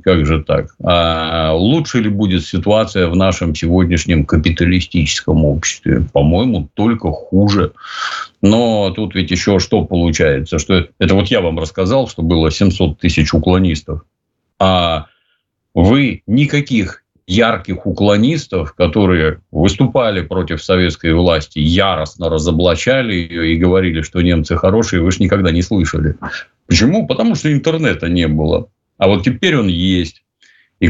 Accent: native